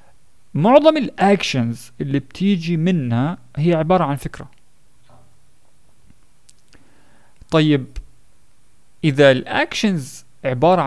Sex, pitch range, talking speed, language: male, 125-170 Hz, 70 wpm, Arabic